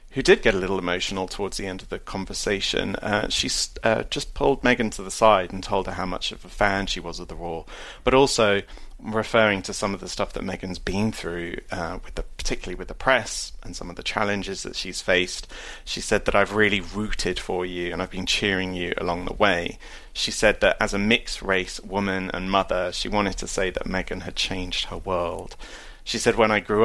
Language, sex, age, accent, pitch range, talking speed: English, male, 30-49, British, 90-110 Hz, 230 wpm